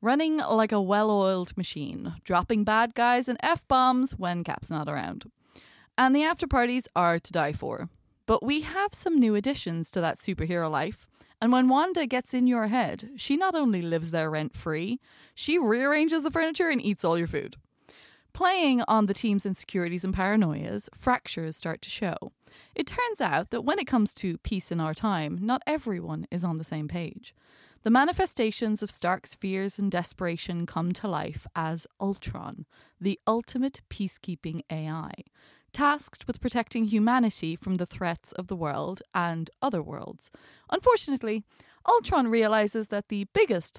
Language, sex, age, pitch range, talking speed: English, female, 20-39, 170-250 Hz, 160 wpm